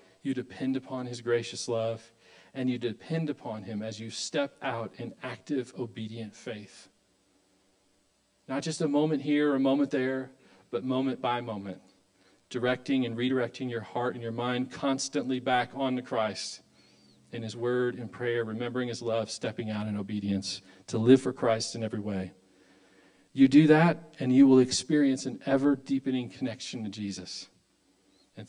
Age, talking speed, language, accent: 40-59, 160 wpm, English, American